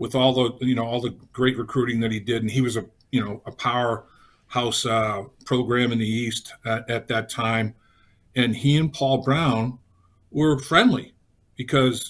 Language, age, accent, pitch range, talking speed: English, 50-69, American, 115-140 Hz, 185 wpm